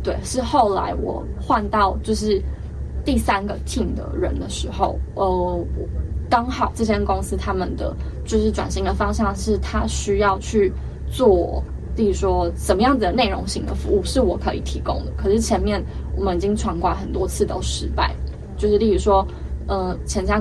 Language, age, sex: Chinese, 20-39, female